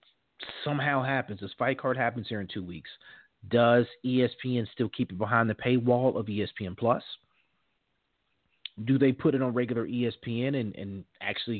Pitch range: 105-130 Hz